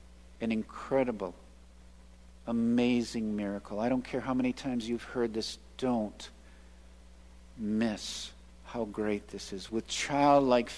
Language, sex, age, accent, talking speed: English, male, 50-69, American, 115 wpm